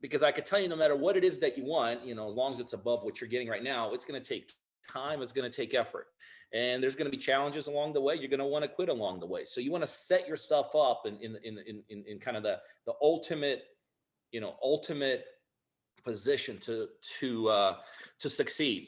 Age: 40-59